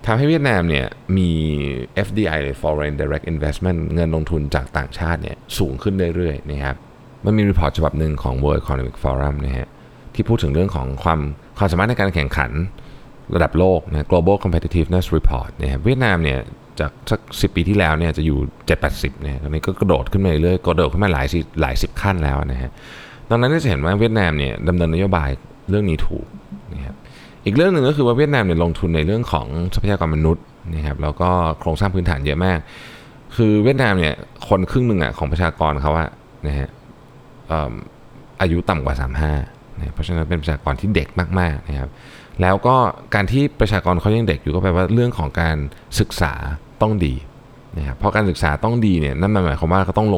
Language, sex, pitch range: Thai, male, 75-105 Hz